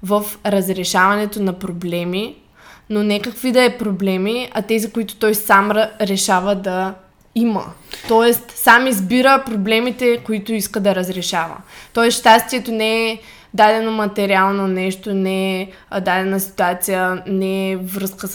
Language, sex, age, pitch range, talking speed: Bulgarian, female, 20-39, 190-225 Hz, 130 wpm